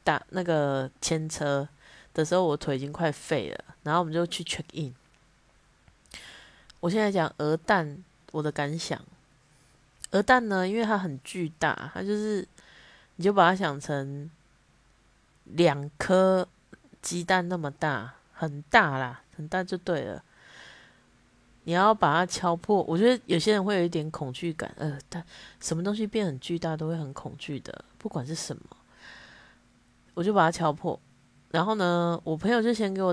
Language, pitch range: Chinese, 145-185 Hz